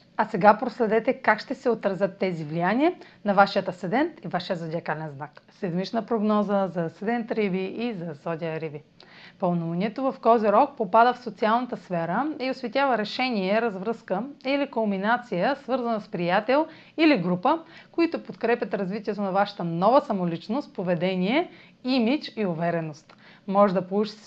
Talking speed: 140 wpm